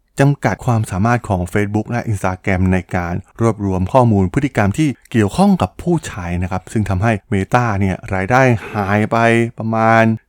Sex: male